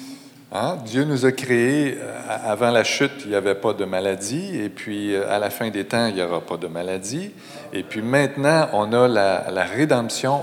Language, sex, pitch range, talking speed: French, male, 105-140 Hz, 195 wpm